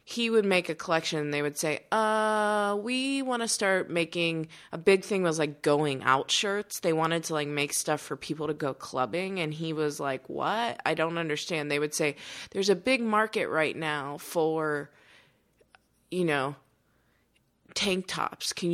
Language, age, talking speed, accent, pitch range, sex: English, 20-39, 185 wpm, American, 145-180 Hz, female